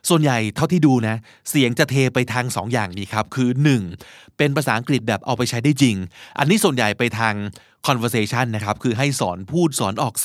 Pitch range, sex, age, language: 115-150 Hz, male, 20-39, Thai